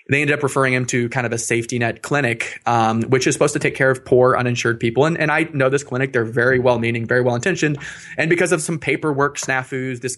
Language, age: English, 20-39